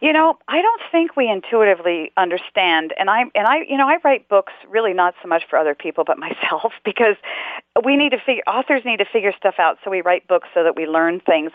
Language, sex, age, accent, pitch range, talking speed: English, female, 40-59, American, 180-265 Hz, 240 wpm